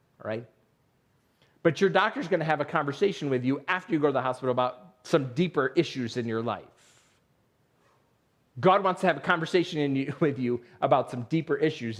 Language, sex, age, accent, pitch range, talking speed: English, male, 40-59, American, 140-185 Hz, 190 wpm